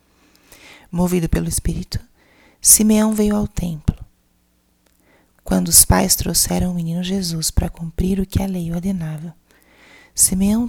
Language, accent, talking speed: Portuguese, Brazilian, 125 wpm